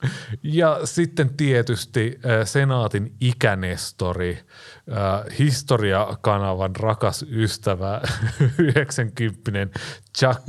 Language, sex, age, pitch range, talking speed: Finnish, male, 30-49, 100-135 Hz, 75 wpm